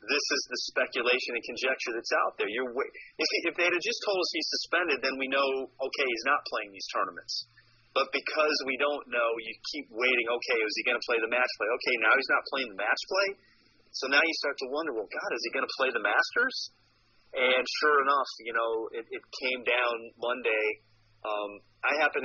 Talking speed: 225 wpm